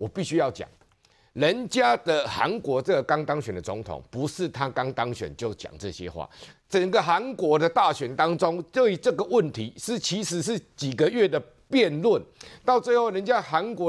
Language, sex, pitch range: Chinese, male, 135-215 Hz